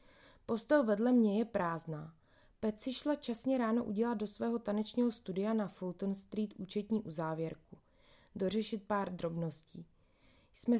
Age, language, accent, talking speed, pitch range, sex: 20-39, Czech, native, 130 wpm, 185-230 Hz, female